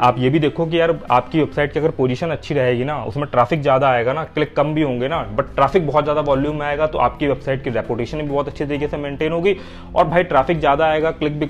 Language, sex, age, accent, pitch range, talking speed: Hindi, male, 30-49, native, 130-160 Hz, 255 wpm